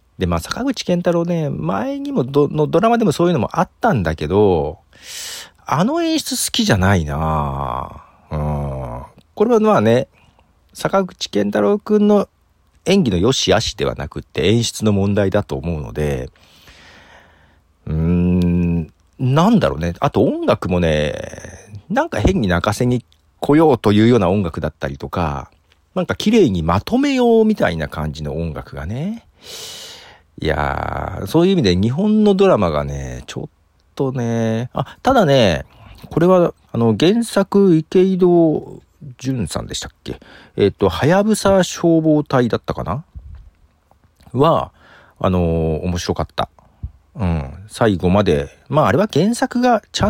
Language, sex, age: Japanese, male, 40-59